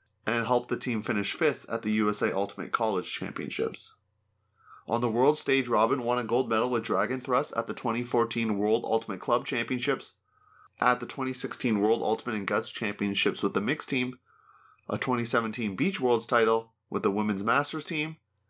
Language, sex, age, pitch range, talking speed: English, male, 30-49, 105-125 Hz, 170 wpm